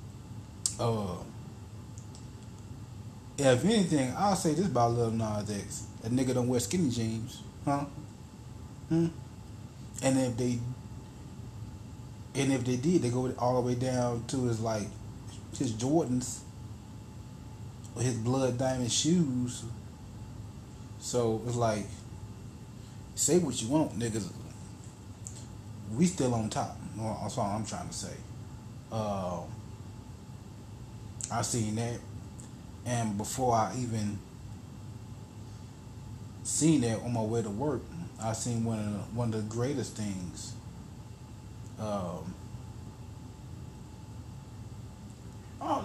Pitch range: 110-125 Hz